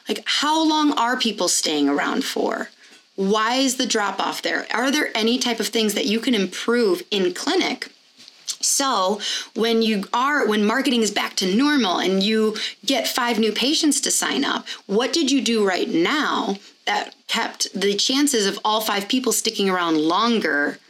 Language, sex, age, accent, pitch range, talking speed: English, female, 30-49, American, 200-265 Hz, 180 wpm